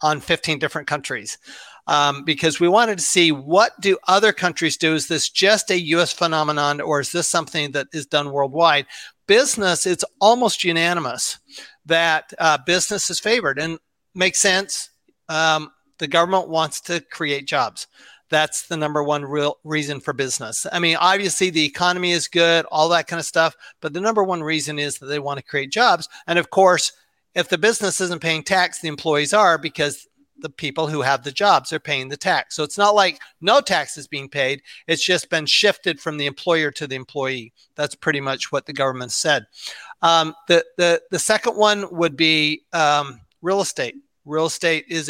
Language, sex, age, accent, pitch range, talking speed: English, male, 40-59, American, 150-180 Hz, 190 wpm